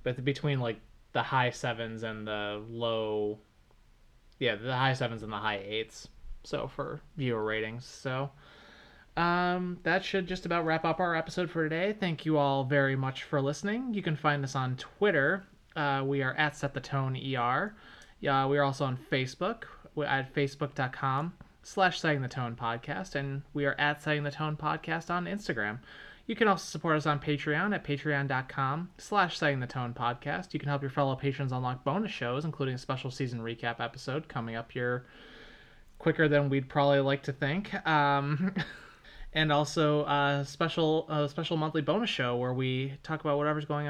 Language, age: English, 20-39